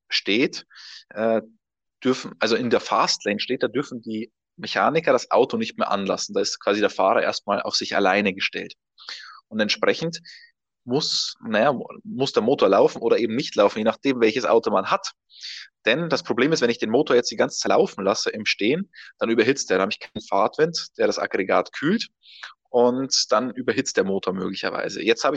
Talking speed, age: 190 wpm, 20-39